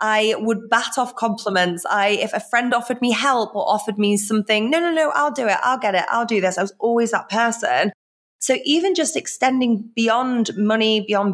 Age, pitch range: 20-39, 195-230 Hz